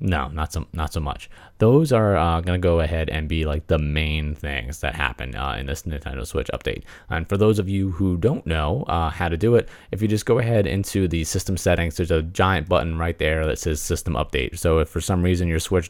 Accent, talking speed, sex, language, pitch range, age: American, 245 wpm, male, English, 80-110 Hz, 30-49